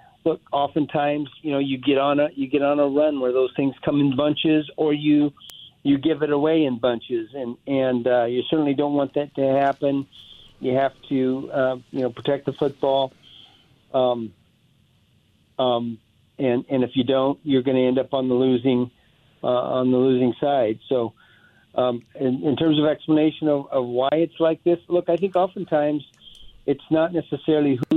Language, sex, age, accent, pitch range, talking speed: English, male, 50-69, American, 125-145 Hz, 185 wpm